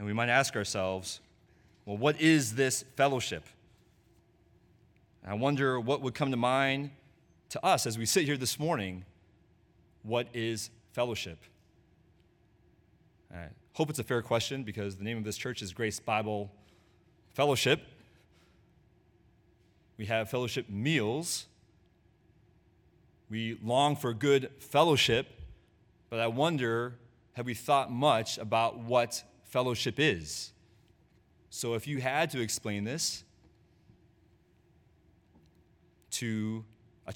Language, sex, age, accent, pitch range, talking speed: English, male, 30-49, American, 100-125 Hz, 120 wpm